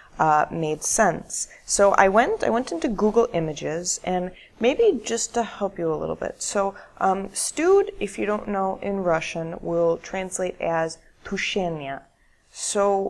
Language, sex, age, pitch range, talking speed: Russian, female, 20-39, 180-245 Hz, 155 wpm